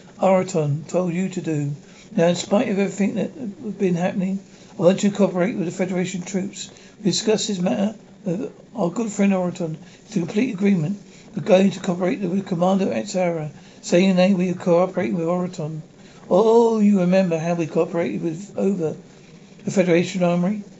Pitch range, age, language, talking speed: 170-195 Hz, 60-79, English, 175 wpm